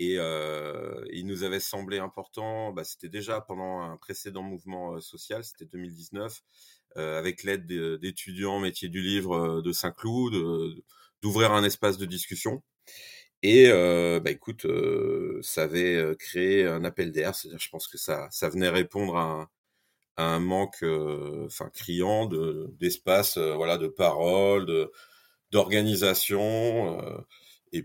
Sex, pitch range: male, 85-105 Hz